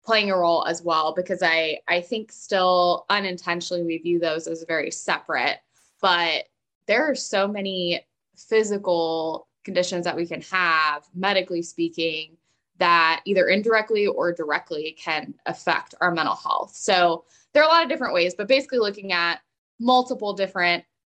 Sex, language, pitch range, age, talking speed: female, English, 180-260 Hz, 20-39, 155 wpm